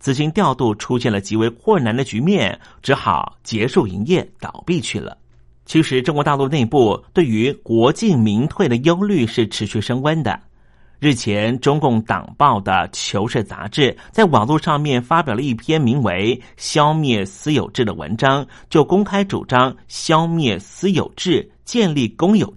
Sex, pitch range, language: male, 110-150 Hz, Chinese